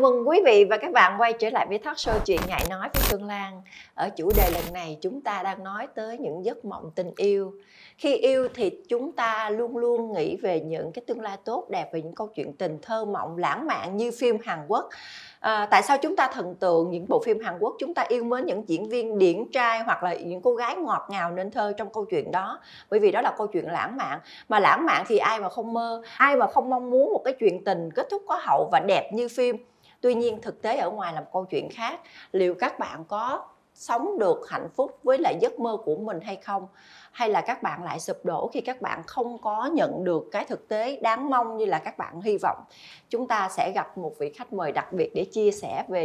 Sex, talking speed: female, 255 wpm